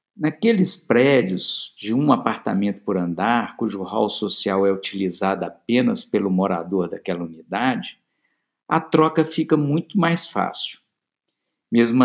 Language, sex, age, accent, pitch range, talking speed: Portuguese, male, 50-69, Brazilian, 110-170 Hz, 120 wpm